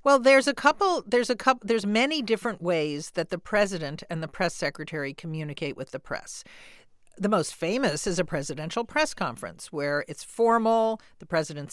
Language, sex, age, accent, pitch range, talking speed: English, female, 50-69, American, 155-200 Hz, 180 wpm